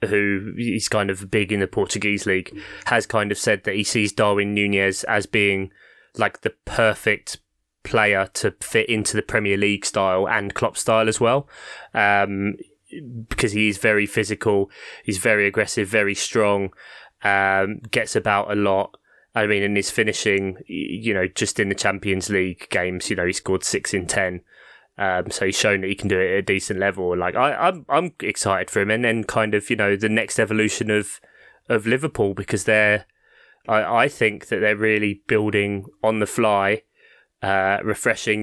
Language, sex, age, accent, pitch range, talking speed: English, male, 20-39, British, 100-110 Hz, 185 wpm